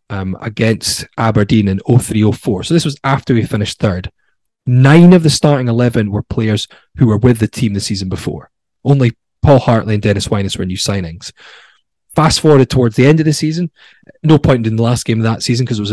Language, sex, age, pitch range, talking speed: English, male, 20-39, 100-135 Hz, 220 wpm